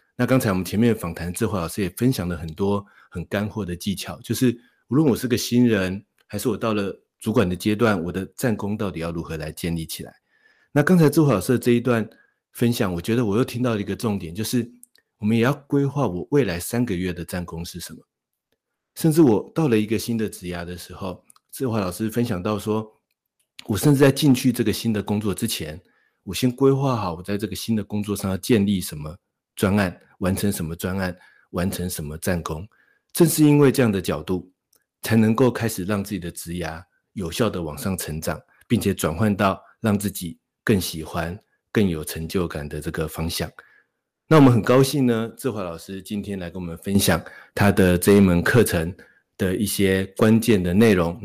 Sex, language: male, Chinese